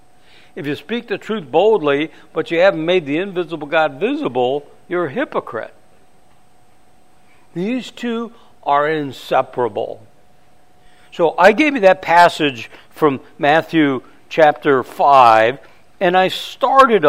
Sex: male